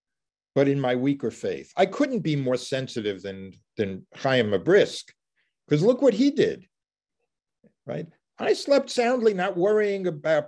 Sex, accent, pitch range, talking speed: male, American, 120-190 Hz, 150 wpm